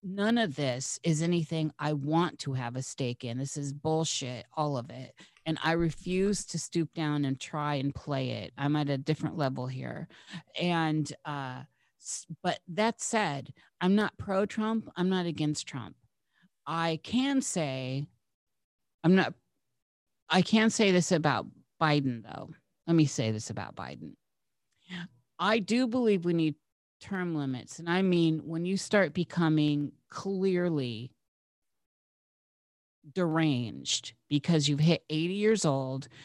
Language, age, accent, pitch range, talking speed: English, 40-59, American, 140-175 Hz, 145 wpm